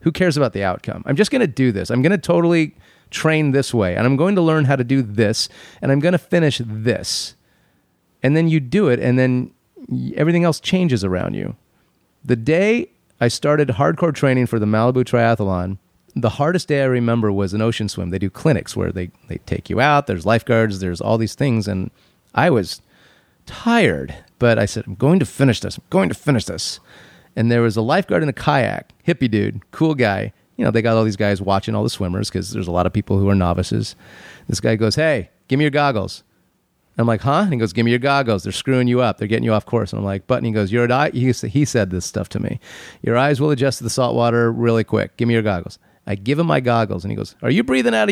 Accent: American